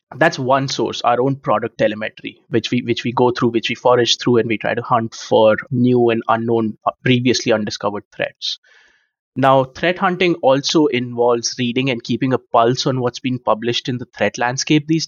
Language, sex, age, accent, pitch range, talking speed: English, male, 20-39, Indian, 115-135 Hz, 190 wpm